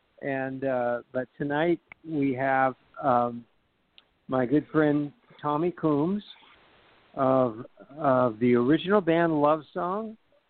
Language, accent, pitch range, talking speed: English, American, 120-145 Hz, 110 wpm